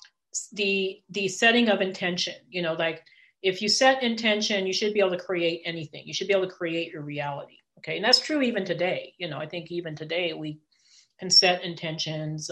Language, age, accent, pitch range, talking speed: English, 40-59, American, 165-210 Hz, 205 wpm